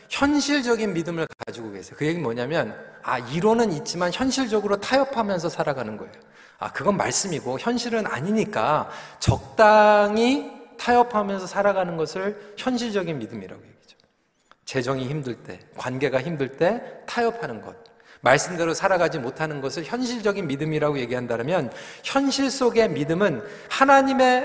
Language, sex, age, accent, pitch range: Korean, male, 40-59, native, 155-235 Hz